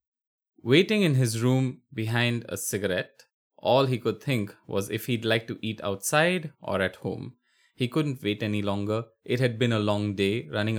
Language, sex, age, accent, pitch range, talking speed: English, male, 20-39, Indian, 105-125 Hz, 185 wpm